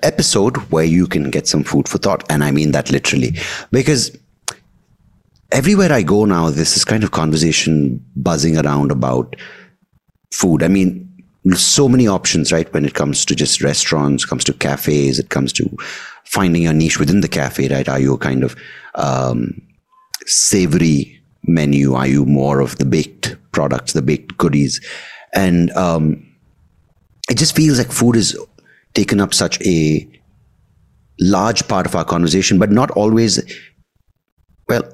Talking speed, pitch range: 160 wpm, 70-90 Hz